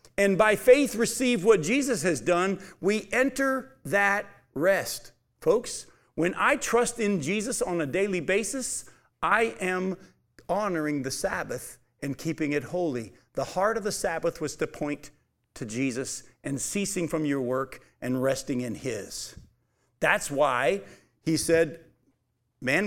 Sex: male